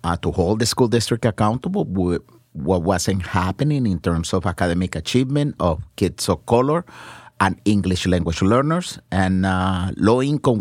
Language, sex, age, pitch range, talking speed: English, male, 50-69, 90-120 Hz, 155 wpm